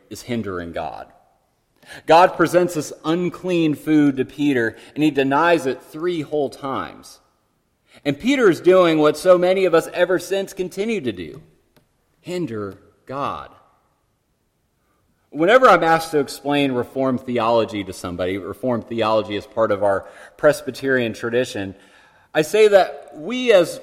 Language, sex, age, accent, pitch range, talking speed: English, male, 30-49, American, 115-155 Hz, 140 wpm